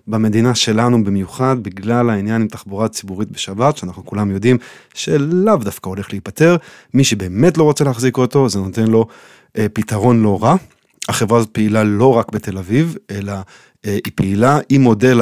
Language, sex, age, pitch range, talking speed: Hebrew, male, 30-49, 105-135 Hz, 160 wpm